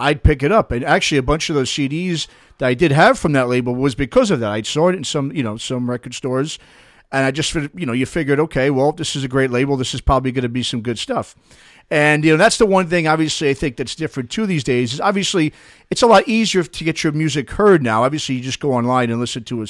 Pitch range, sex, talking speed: 135-180 Hz, male, 275 wpm